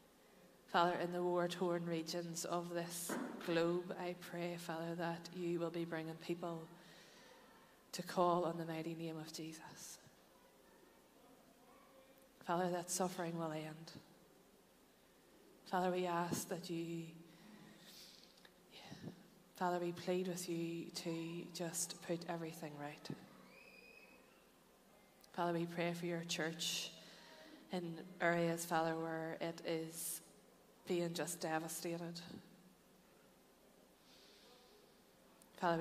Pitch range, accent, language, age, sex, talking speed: 165-180 Hz, Irish, English, 20-39, female, 100 wpm